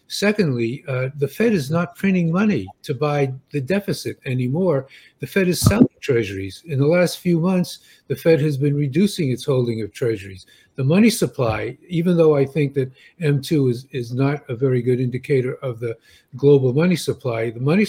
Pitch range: 130-175 Hz